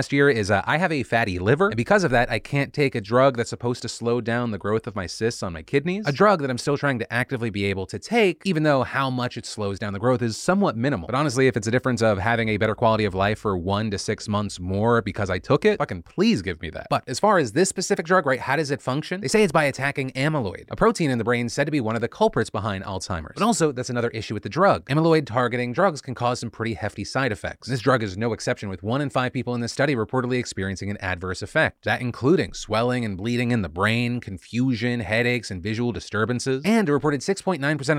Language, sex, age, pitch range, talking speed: English, male, 30-49, 110-140 Hz, 265 wpm